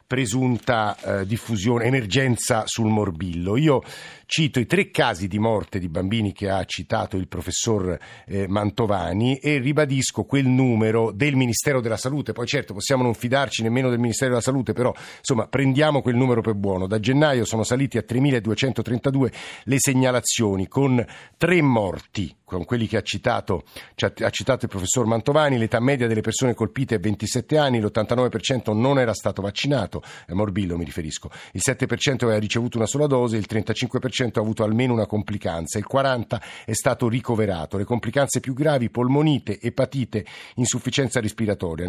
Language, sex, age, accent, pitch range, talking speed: Italian, male, 50-69, native, 105-130 Hz, 160 wpm